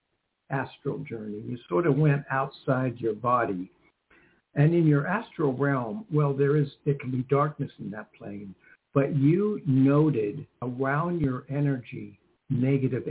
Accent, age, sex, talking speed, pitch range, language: American, 60-79, male, 140 wpm, 125-150 Hz, English